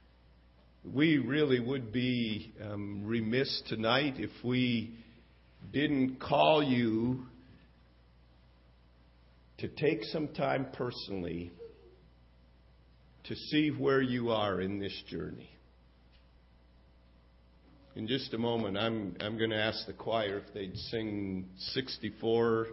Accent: American